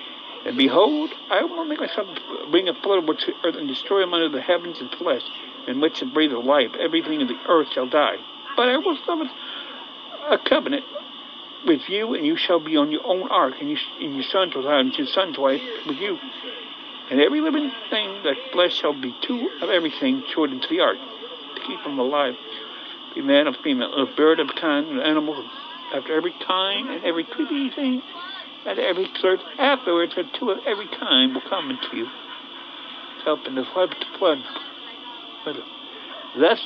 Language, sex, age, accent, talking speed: English, male, 60-79, American, 185 wpm